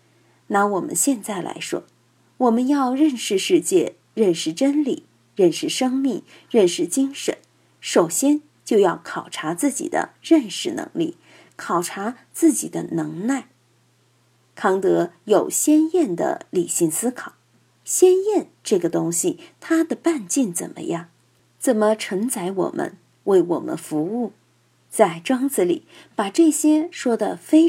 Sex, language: female, Chinese